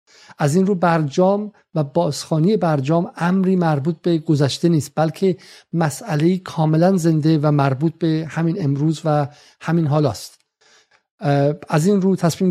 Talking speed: 140 wpm